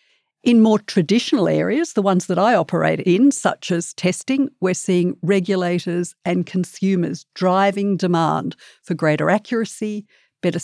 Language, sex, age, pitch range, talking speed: English, female, 50-69, 170-200 Hz, 135 wpm